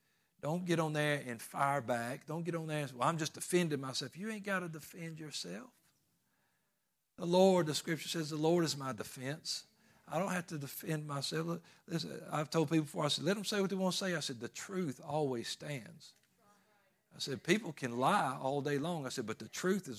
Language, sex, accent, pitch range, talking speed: English, male, American, 140-175 Hz, 220 wpm